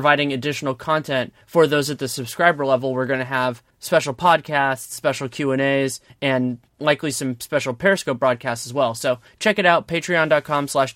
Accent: American